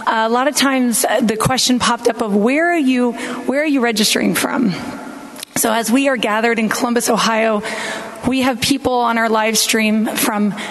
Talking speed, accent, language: 185 wpm, American, English